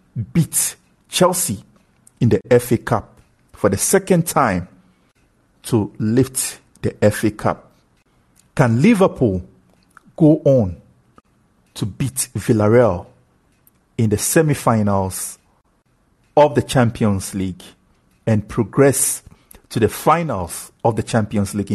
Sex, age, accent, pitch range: male, 50-69, Nigerian, 95-130 Hz